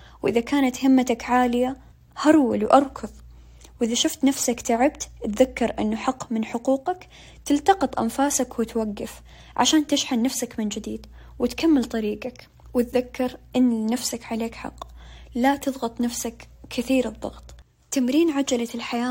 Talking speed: 120 wpm